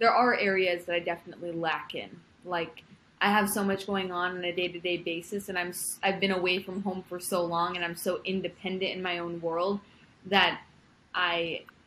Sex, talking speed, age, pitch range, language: female, 205 wpm, 20-39, 175-200 Hz, English